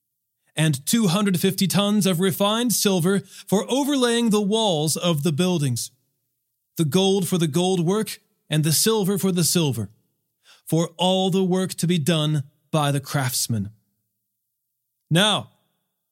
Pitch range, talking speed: 135-190 Hz, 135 wpm